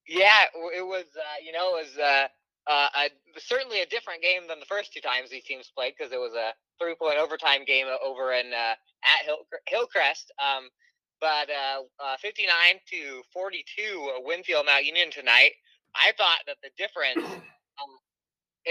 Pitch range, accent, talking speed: 150-230 Hz, American, 185 wpm